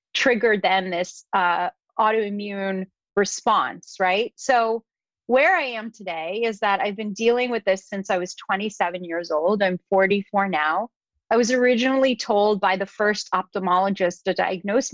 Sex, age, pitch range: female, 30-49, 190-230 Hz